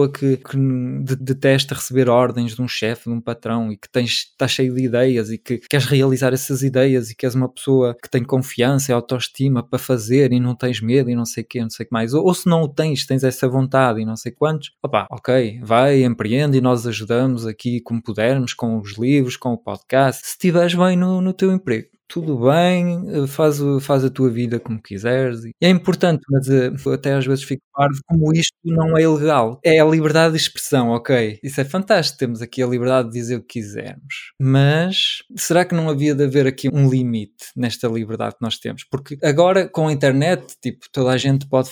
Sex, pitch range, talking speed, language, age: male, 120-145 Hz, 215 wpm, Portuguese, 20-39